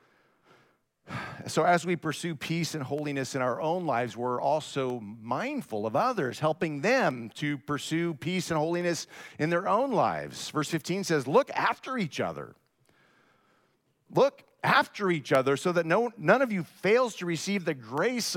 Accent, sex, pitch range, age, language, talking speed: American, male, 155-215 Hz, 40-59, English, 155 wpm